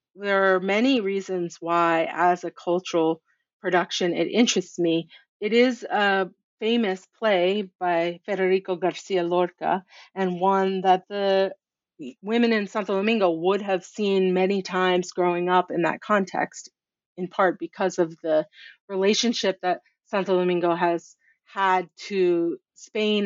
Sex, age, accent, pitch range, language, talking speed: female, 30-49, American, 180-205 Hz, English, 135 wpm